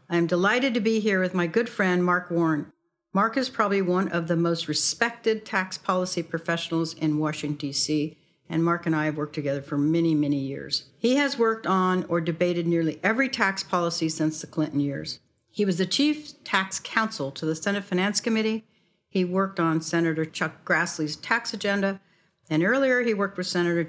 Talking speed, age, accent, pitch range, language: 190 wpm, 60-79, American, 160-205 Hz, English